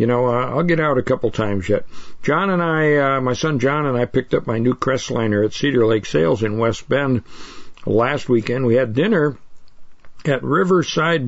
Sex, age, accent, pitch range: male, 60-79, American, 115-155 Hz